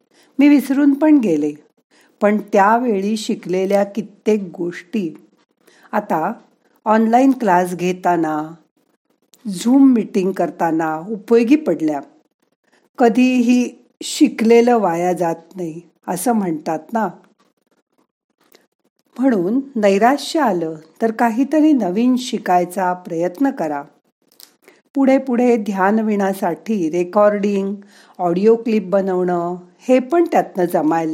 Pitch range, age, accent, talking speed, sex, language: 180-250 Hz, 50-69, native, 90 wpm, female, Marathi